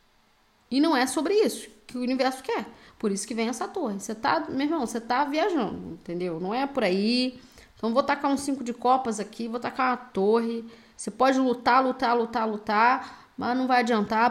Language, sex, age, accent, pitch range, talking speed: Portuguese, female, 10-29, Brazilian, 230-280 Hz, 205 wpm